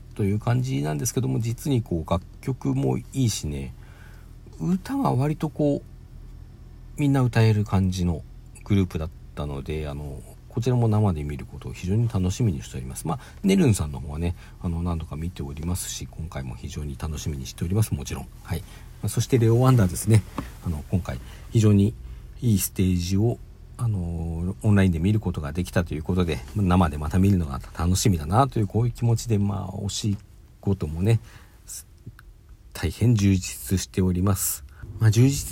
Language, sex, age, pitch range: Japanese, male, 50-69, 90-115 Hz